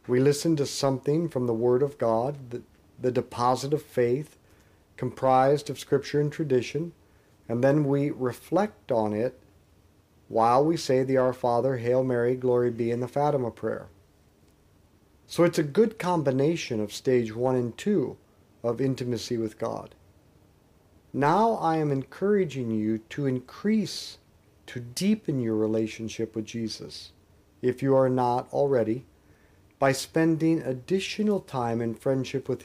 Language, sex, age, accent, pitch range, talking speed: English, male, 50-69, American, 105-145 Hz, 145 wpm